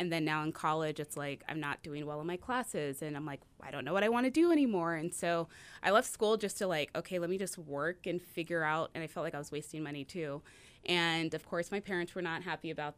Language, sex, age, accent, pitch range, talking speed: English, female, 20-39, American, 155-185 Hz, 280 wpm